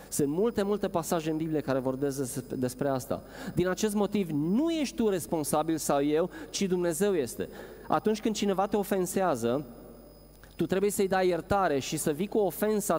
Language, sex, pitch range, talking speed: Romanian, male, 130-180 Hz, 170 wpm